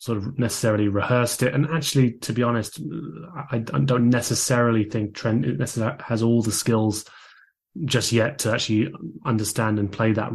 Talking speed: 160 wpm